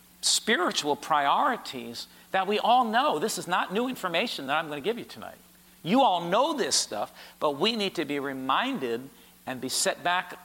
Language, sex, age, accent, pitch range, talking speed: English, male, 50-69, American, 130-185 Hz, 190 wpm